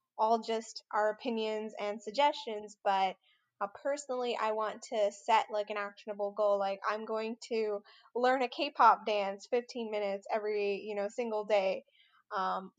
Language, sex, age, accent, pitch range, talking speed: English, female, 10-29, American, 205-235 Hz, 155 wpm